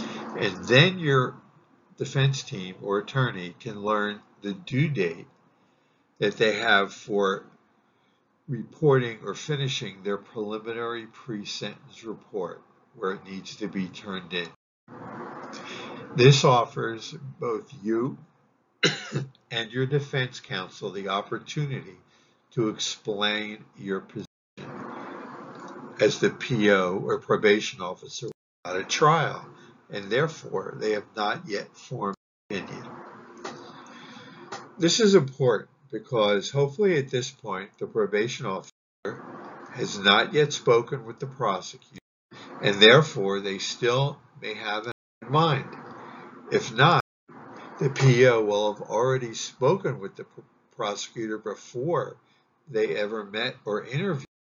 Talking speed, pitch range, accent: 115 wpm, 105-145 Hz, American